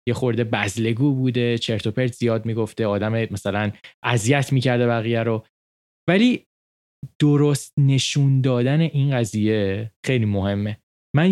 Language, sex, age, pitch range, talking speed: Persian, male, 20-39, 110-155 Hz, 125 wpm